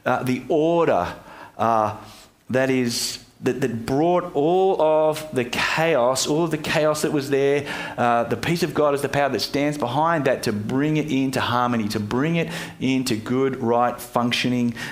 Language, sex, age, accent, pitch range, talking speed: English, male, 40-59, Australian, 120-155 Hz, 175 wpm